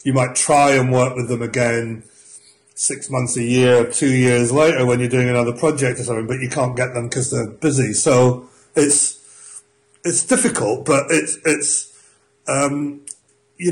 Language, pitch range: English, 120-140 Hz